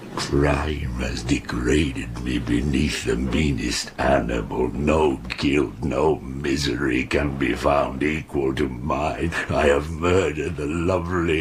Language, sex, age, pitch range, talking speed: English, male, 60-79, 85-115 Hz, 120 wpm